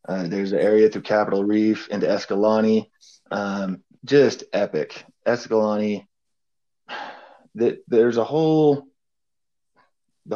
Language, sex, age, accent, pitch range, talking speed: English, male, 20-39, American, 95-115 Hz, 105 wpm